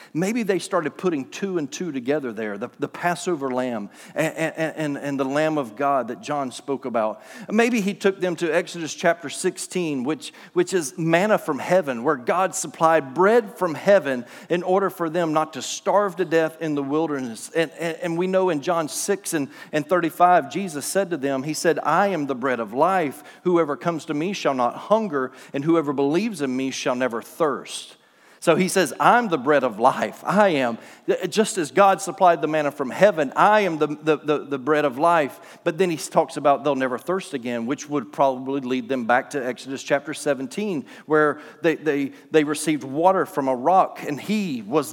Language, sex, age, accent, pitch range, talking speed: English, male, 40-59, American, 140-185 Hz, 200 wpm